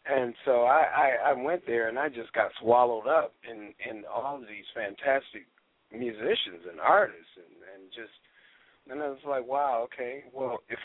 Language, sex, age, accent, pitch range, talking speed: English, male, 40-59, American, 120-155 Hz, 185 wpm